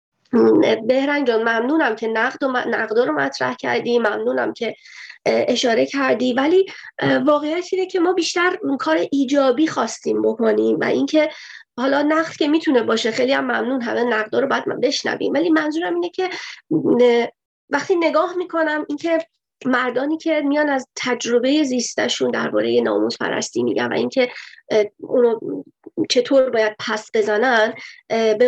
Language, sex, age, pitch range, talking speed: Persian, female, 30-49, 235-325 Hz, 135 wpm